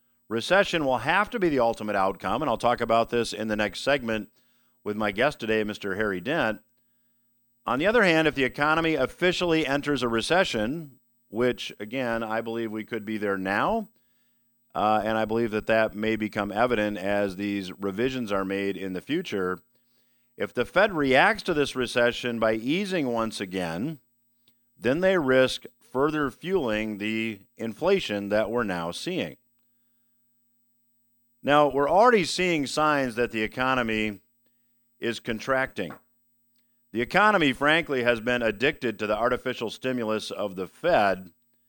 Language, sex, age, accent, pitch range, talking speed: English, male, 50-69, American, 105-130 Hz, 155 wpm